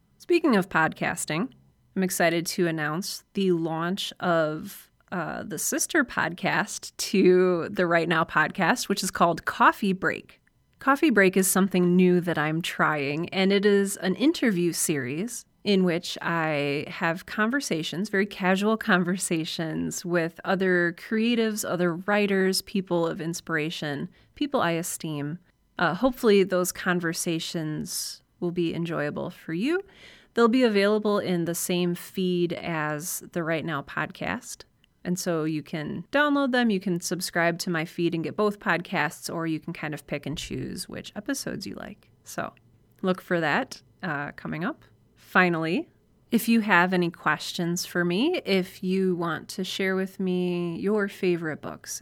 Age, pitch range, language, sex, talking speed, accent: 30-49, 165-200 Hz, English, female, 150 wpm, American